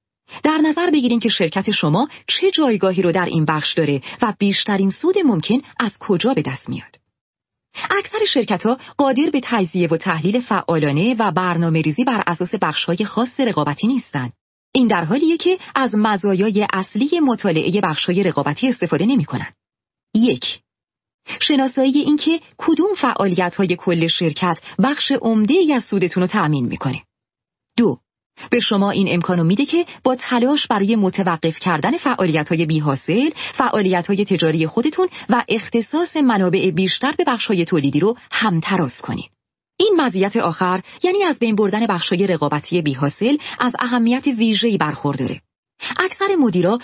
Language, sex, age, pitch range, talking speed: Persian, female, 30-49, 175-260 Hz, 140 wpm